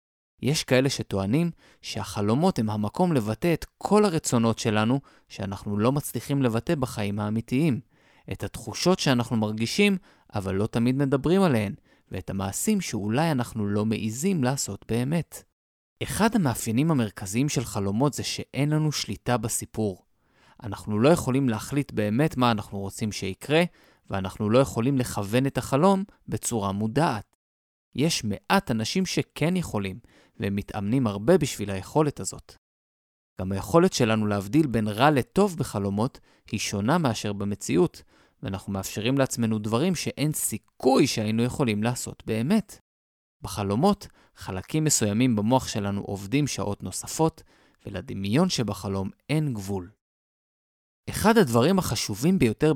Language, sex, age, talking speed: Hebrew, male, 20-39, 125 wpm